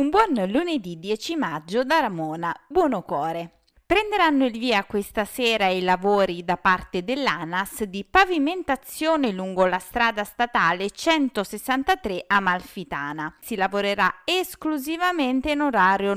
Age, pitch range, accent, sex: 30-49, 185-270 Hz, native, female